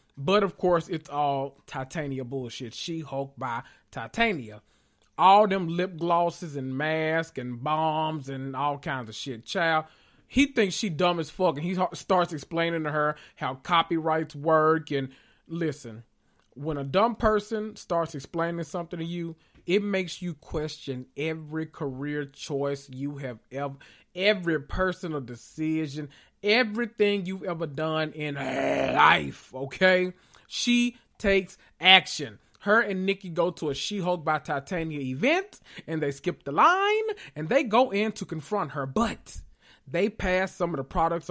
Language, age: English, 30-49